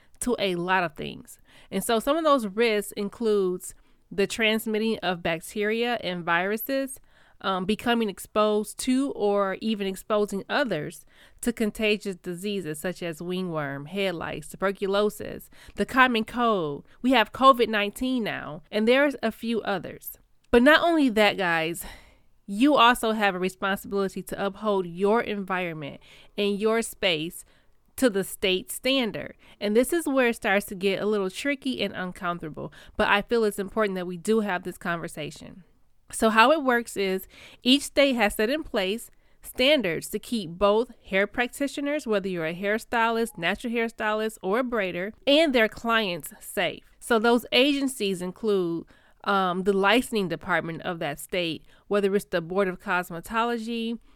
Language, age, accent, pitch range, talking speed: English, 30-49, American, 190-235 Hz, 155 wpm